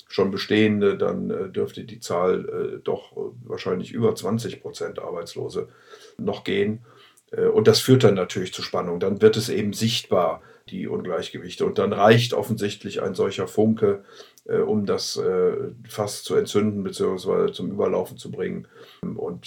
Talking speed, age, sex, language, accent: 155 wpm, 50-69, male, German, German